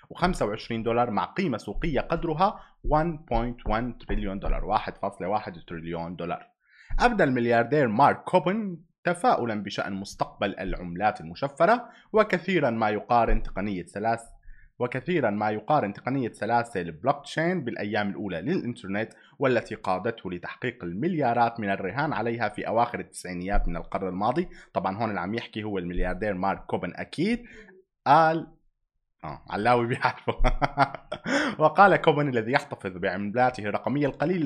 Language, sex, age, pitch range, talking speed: Arabic, male, 30-49, 105-155 Hz, 120 wpm